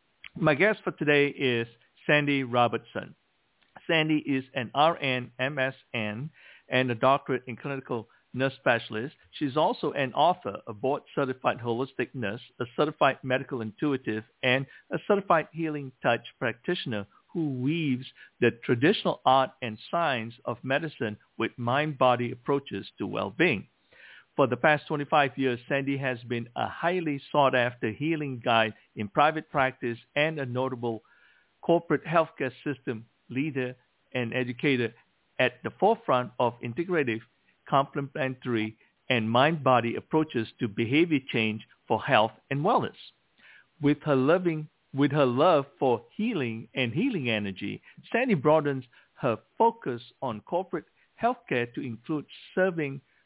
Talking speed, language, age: 125 wpm, English, 50-69